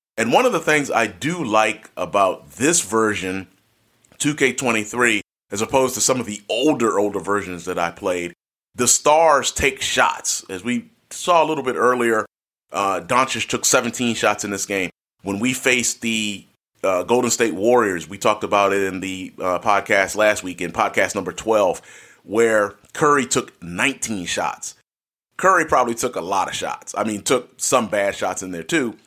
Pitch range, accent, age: 100-125 Hz, American, 30-49